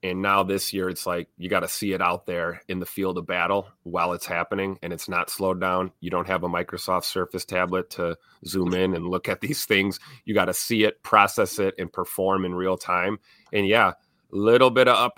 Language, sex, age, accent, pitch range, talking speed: English, male, 30-49, American, 95-115 Hz, 235 wpm